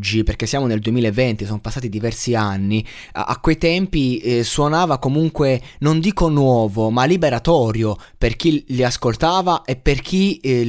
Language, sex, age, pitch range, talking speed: Italian, male, 20-39, 110-135 Hz, 155 wpm